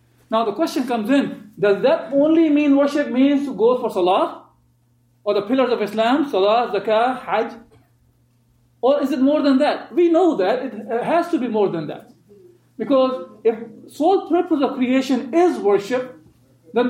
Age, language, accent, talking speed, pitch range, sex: 40-59, English, Indian, 170 wpm, 205-280 Hz, male